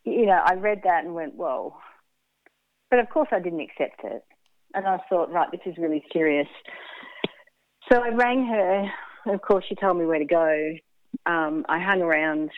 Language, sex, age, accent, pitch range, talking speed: English, female, 40-59, Australian, 155-215 Hz, 185 wpm